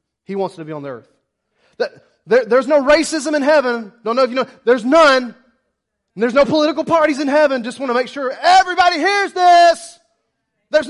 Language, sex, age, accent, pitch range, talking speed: English, male, 30-49, American, 255-330 Hz, 195 wpm